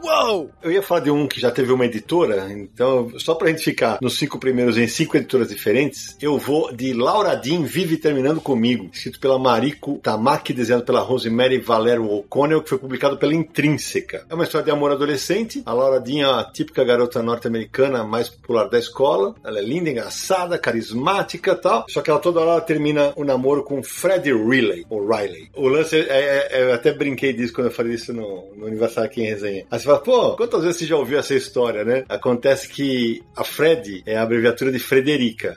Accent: Brazilian